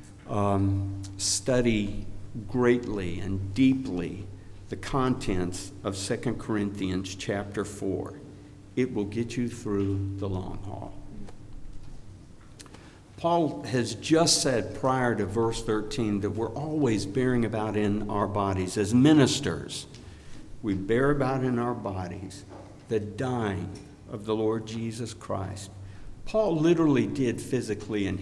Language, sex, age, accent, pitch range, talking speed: English, male, 60-79, American, 100-130 Hz, 120 wpm